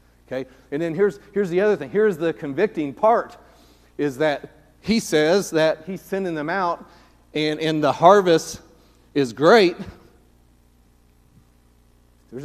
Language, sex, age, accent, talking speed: English, male, 40-59, American, 135 wpm